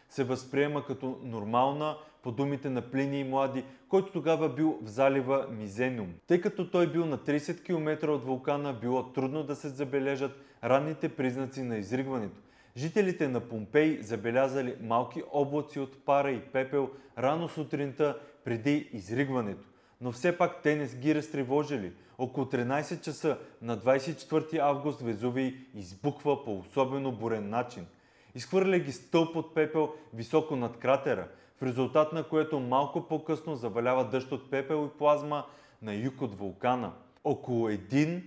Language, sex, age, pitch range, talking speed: Bulgarian, male, 30-49, 125-150 Hz, 145 wpm